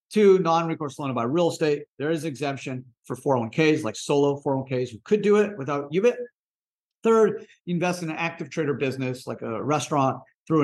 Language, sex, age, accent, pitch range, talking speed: English, male, 50-69, American, 125-170 Hz, 180 wpm